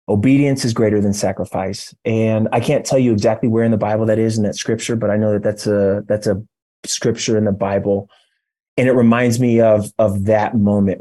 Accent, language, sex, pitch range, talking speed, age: American, English, male, 105-120 Hz, 220 wpm, 30-49